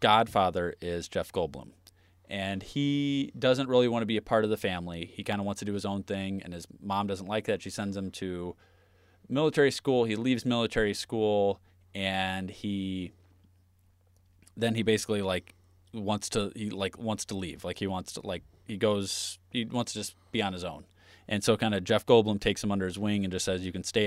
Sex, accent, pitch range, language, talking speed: male, American, 90-110 Hz, English, 215 wpm